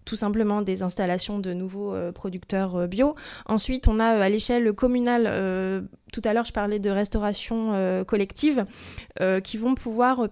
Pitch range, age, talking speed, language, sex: 200-235 Hz, 20-39, 170 wpm, French, female